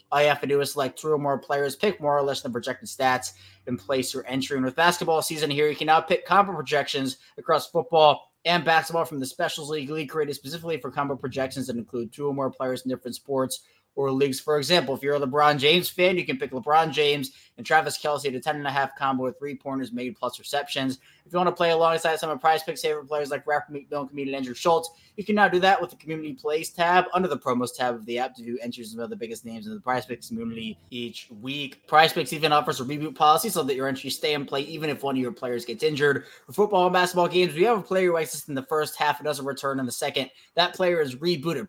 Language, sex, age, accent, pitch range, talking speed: English, male, 20-39, American, 130-160 Hz, 265 wpm